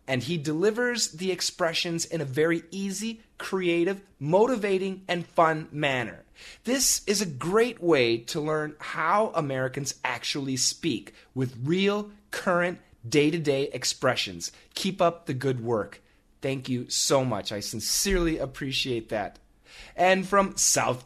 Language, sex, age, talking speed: English, male, 30-49, 130 wpm